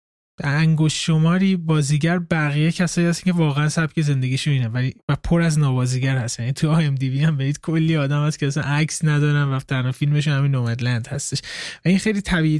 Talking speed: 185 wpm